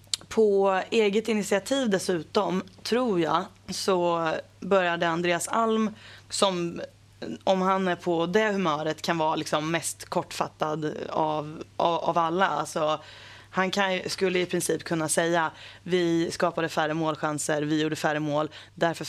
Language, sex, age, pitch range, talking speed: Swedish, female, 20-39, 155-190 Hz, 130 wpm